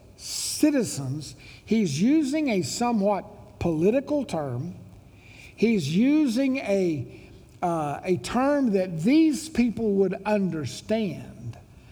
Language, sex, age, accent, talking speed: English, male, 60-79, American, 90 wpm